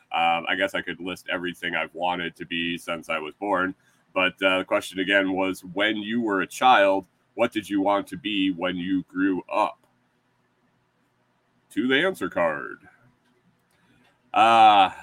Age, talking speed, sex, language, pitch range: 30-49, 165 wpm, male, English, 85-120 Hz